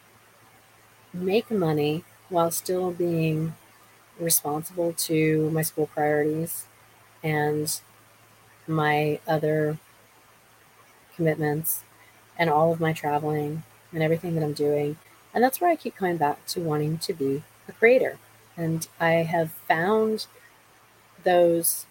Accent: American